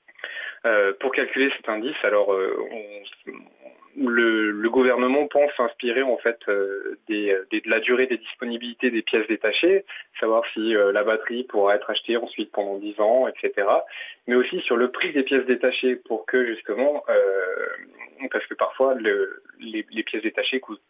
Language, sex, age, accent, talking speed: French, male, 20-39, French, 170 wpm